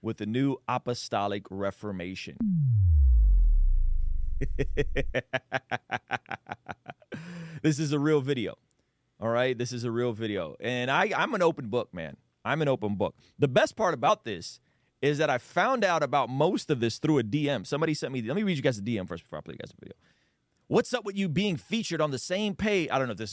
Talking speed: 200 wpm